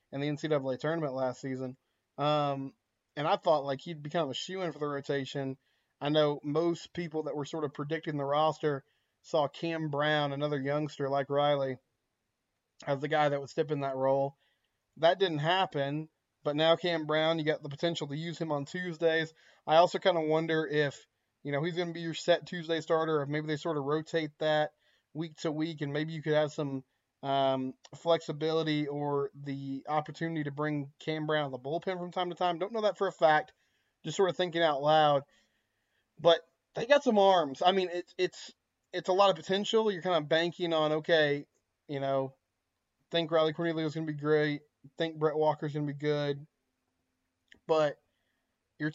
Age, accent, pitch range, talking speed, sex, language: 20-39, American, 140-165 Hz, 200 wpm, male, English